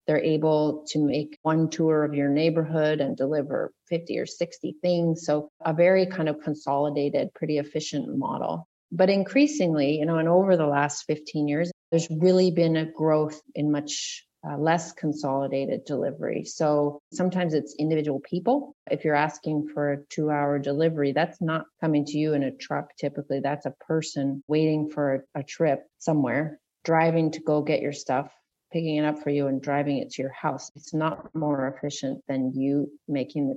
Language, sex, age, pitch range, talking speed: English, female, 30-49, 145-165 Hz, 175 wpm